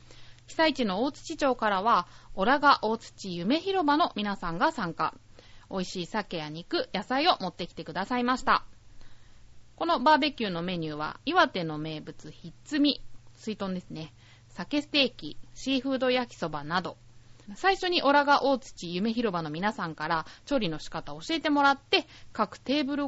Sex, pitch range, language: female, 165-270 Hz, Japanese